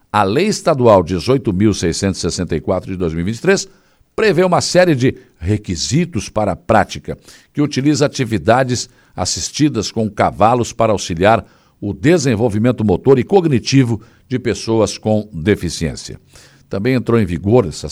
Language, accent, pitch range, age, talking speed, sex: Portuguese, Brazilian, 95-130 Hz, 60-79, 115 wpm, male